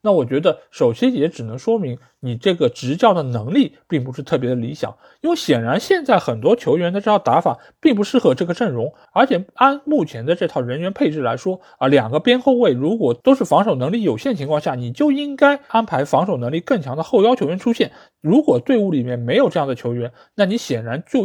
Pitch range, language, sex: 150-235 Hz, Chinese, male